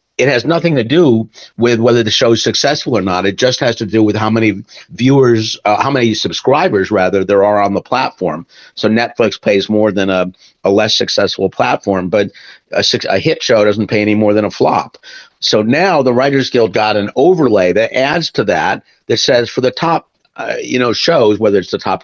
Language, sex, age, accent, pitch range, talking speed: English, male, 50-69, American, 100-120 Hz, 215 wpm